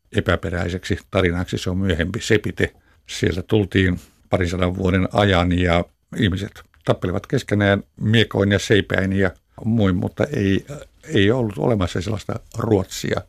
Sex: male